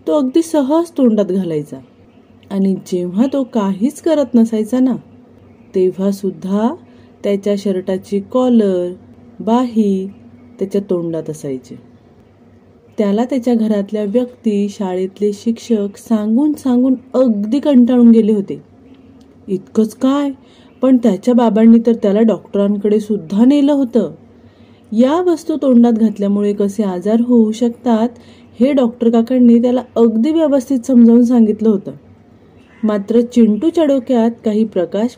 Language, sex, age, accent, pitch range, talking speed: Marathi, female, 30-49, native, 205-255 Hz, 115 wpm